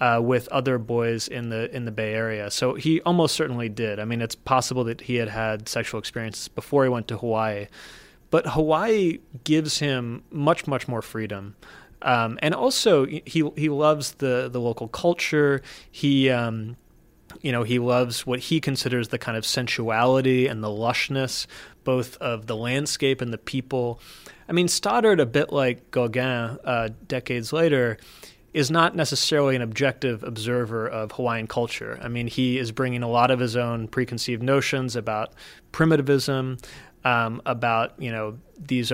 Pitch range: 115-140 Hz